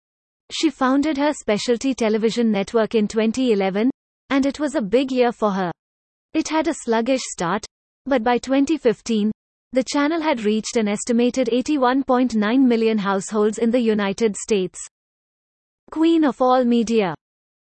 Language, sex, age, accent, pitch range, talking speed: English, female, 30-49, Indian, 215-270 Hz, 140 wpm